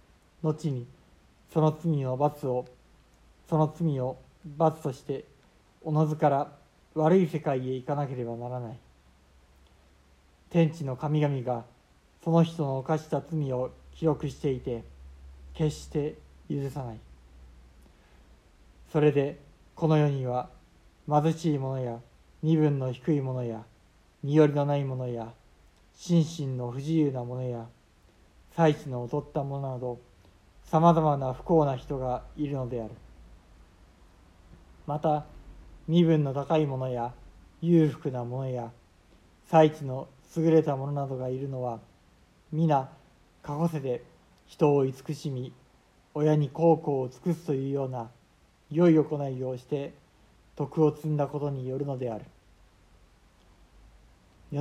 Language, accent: Japanese, native